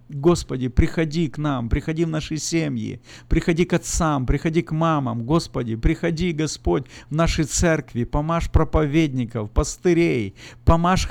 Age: 50-69